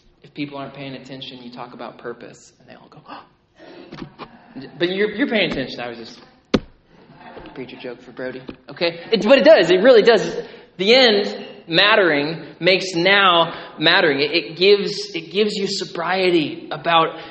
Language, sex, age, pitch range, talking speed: English, male, 20-39, 145-185 Hz, 165 wpm